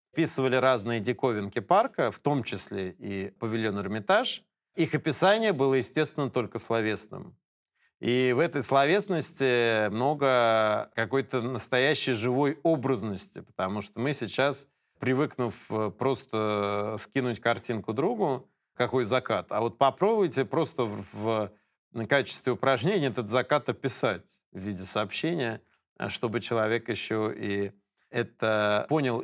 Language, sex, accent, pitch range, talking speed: Russian, male, native, 115-155 Hz, 115 wpm